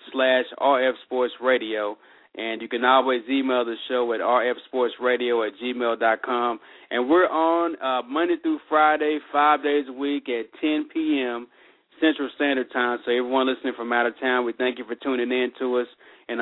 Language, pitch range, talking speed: English, 120-145 Hz, 185 wpm